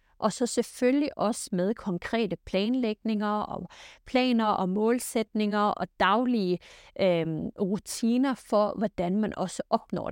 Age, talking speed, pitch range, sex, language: 30-49, 115 wpm, 190-230 Hz, female, Danish